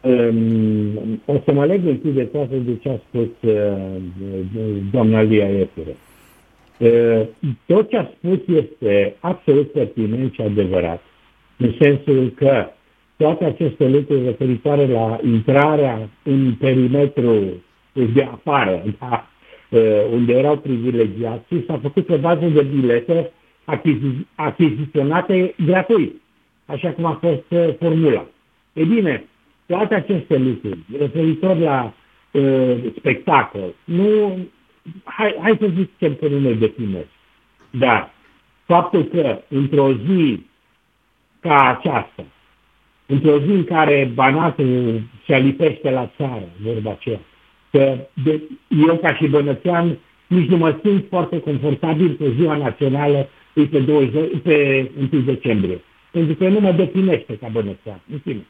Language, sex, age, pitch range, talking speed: Romanian, male, 60-79, 115-160 Hz, 125 wpm